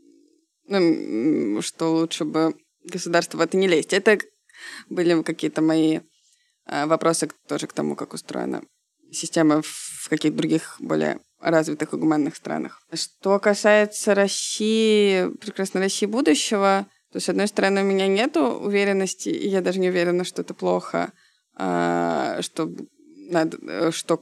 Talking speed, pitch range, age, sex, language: 130 wpm, 160-195 Hz, 20-39, female, Russian